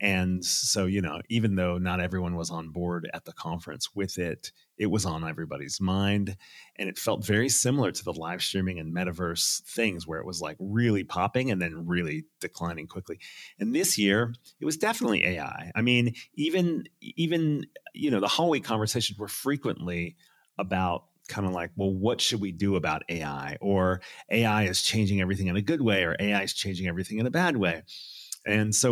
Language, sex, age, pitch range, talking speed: English, male, 30-49, 90-120 Hz, 195 wpm